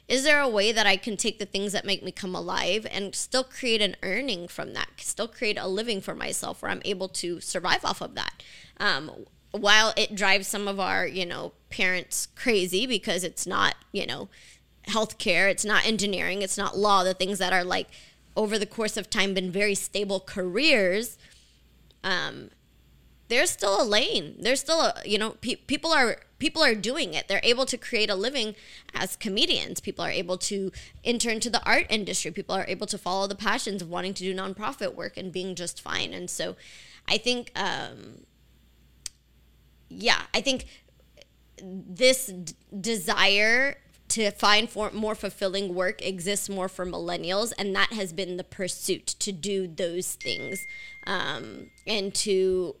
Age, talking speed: 20-39, 180 wpm